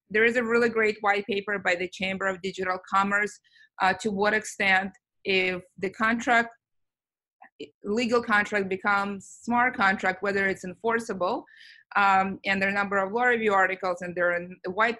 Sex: female